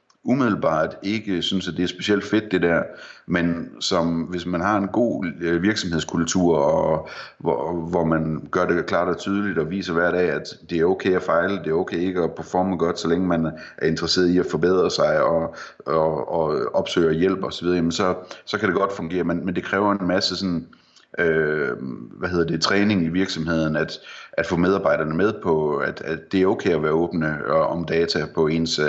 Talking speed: 195 wpm